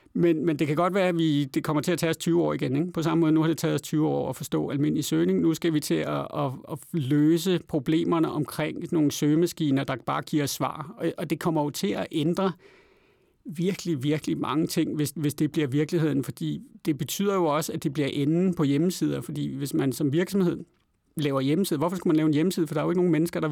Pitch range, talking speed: 150-170 Hz, 250 wpm